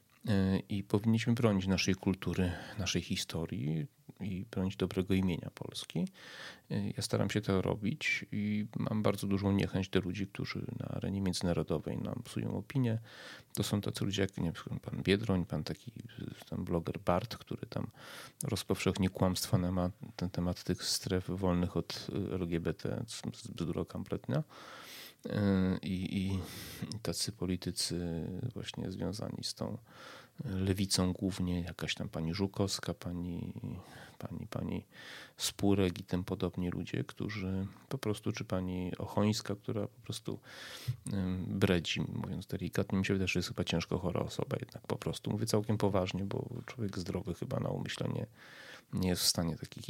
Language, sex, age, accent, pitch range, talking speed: Polish, male, 30-49, native, 90-105 Hz, 145 wpm